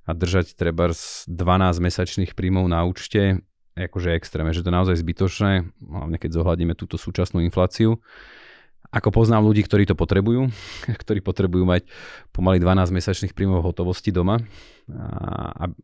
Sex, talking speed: male, 150 wpm